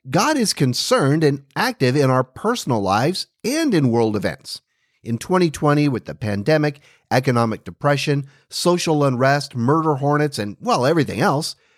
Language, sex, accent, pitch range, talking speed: English, male, American, 125-175 Hz, 145 wpm